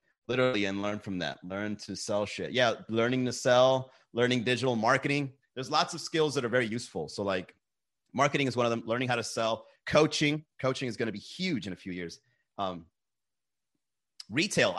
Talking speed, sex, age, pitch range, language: 195 wpm, male, 30-49, 115-150 Hz, English